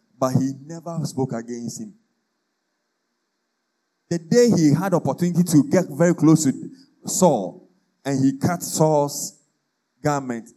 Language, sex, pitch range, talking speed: English, male, 130-200 Hz, 130 wpm